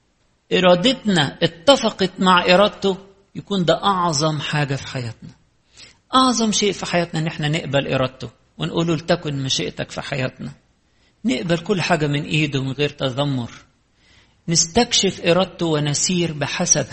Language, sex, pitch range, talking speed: English, male, 135-175 Hz, 125 wpm